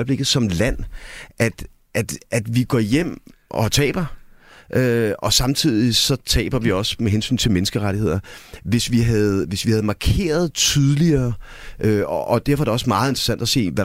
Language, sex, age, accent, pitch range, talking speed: Danish, male, 30-49, native, 105-140 Hz, 180 wpm